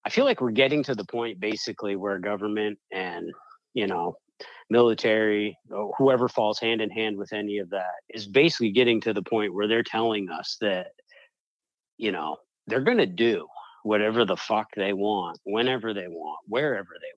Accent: American